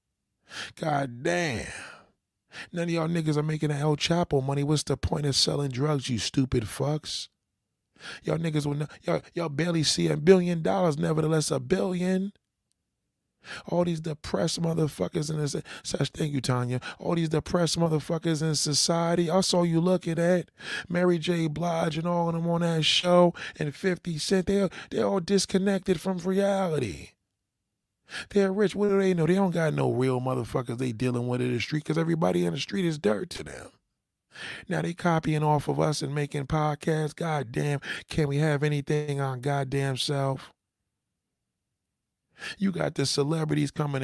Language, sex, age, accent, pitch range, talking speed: English, male, 20-39, American, 135-170 Hz, 170 wpm